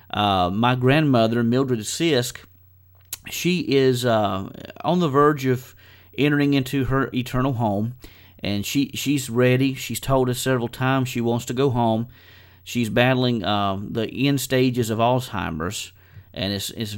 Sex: male